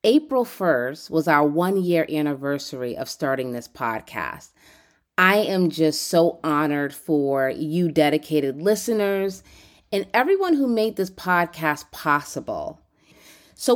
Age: 30-49